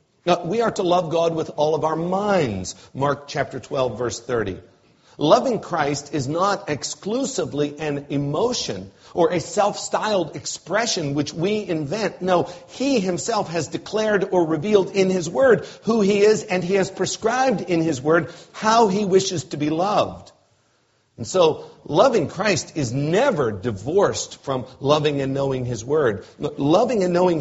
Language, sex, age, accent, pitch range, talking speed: English, male, 50-69, American, 135-185 Hz, 155 wpm